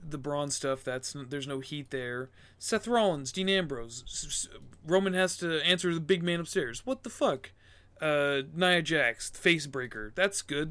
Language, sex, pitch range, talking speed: English, male, 110-160 Hz, 155 wpm